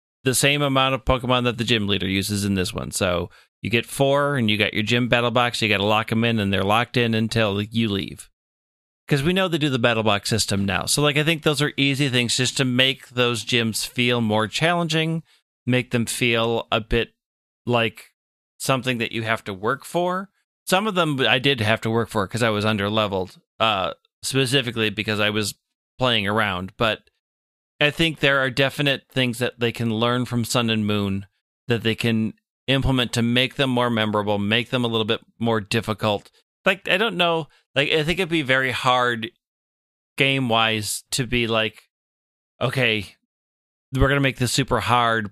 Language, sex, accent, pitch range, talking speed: English, male, American, 105-130 Hz, 200 wpm